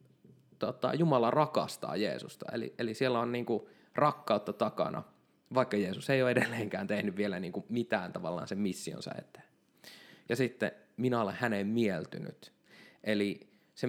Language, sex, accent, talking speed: Finnish, male, native, 130 wpm